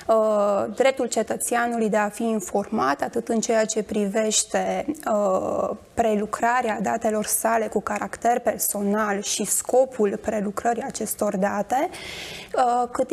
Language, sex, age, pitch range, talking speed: Romanian, female, 20-39, 215-245 Hz, 105 wpm